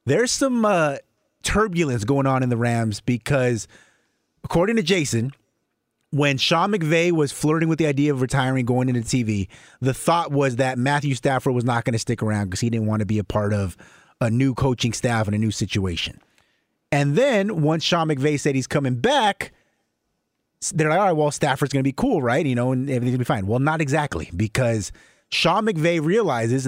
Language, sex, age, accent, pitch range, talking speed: English, male, 30-49, American, 120-155 Hz, 200 wpm